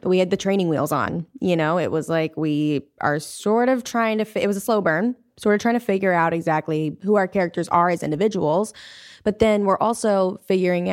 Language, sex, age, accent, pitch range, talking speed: English, female, 20-39, American, 150-180 Hz, 230 wpm